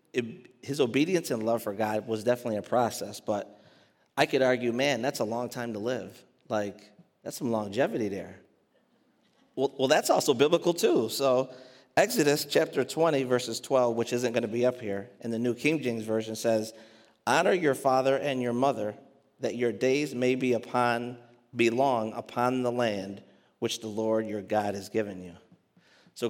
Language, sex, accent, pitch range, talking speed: English, male, American, 110-130 Hz, 175 wpm